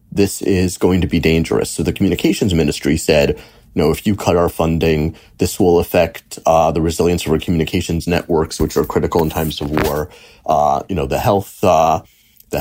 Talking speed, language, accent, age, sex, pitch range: 200 wpm, English, American, 30-49, male, 85-105 Hz